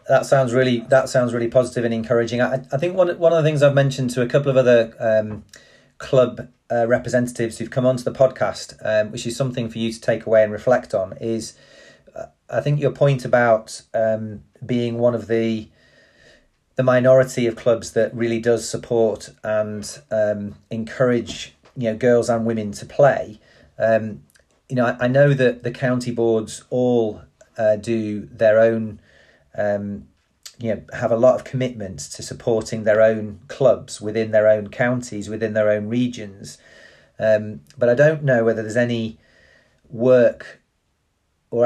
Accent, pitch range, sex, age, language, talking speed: British, 110-125 Hz, male, 40-59, English, 175 wpm